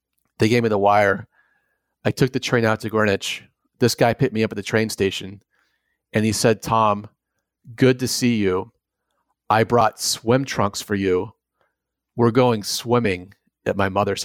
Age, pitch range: 30-49, 105-120 Hz